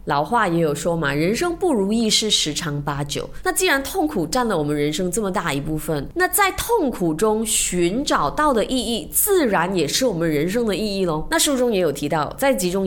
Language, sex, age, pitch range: Chinese, female, 20-39, 160-260 Hz